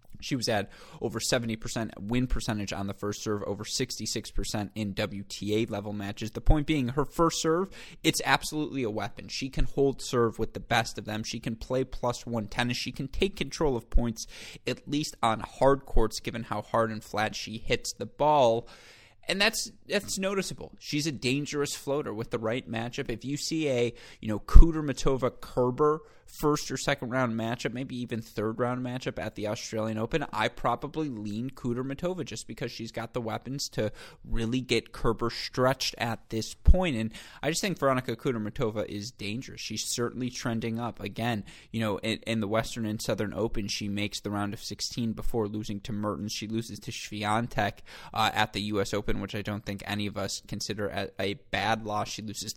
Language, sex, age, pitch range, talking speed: English, male, 20-39, 105-130 Hz, 195 wpm